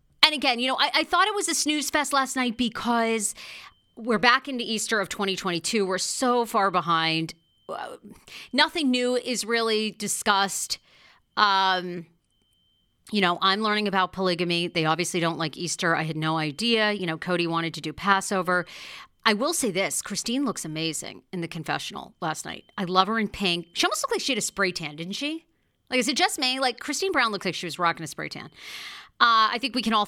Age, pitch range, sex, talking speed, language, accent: 40-59, 175-230 Hz, female, 205 wpm, English, American